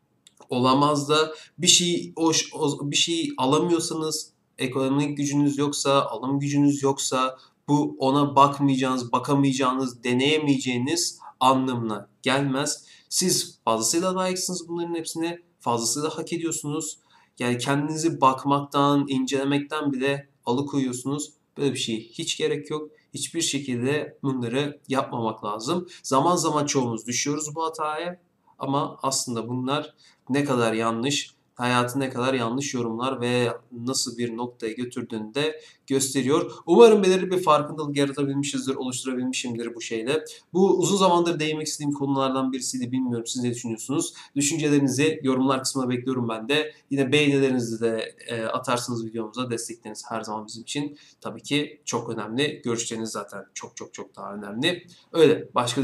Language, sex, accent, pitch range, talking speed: Turkish, male, native, 125-150 Hz, 130 wpm